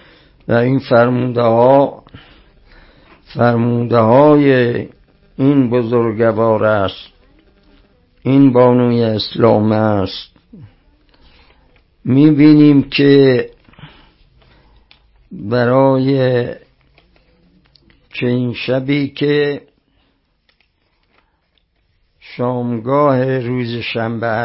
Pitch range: 110-135 Hz